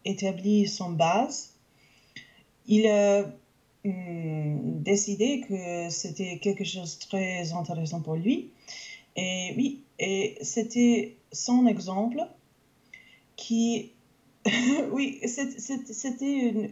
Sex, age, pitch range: female, 30-49, 195-235 Hz